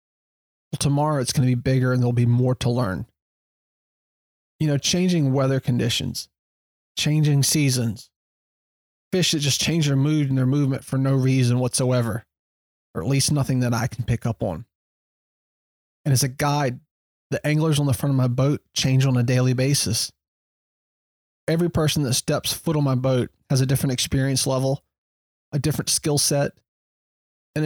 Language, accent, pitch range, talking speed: English, American, 120-145 Hz, 170 wpm